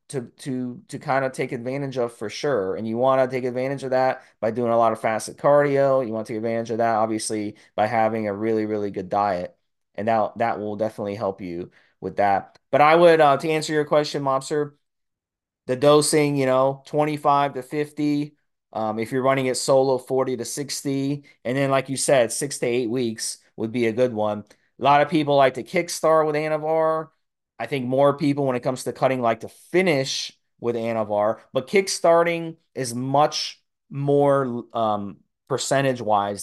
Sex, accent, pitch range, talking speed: male, American, 115-145 Hz, 195 wpm